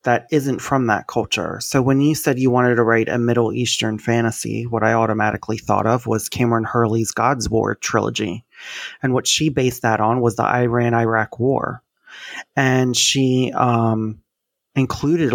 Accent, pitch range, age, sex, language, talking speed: American, 115-130 Hz, 30-49, male, English, 165 wpm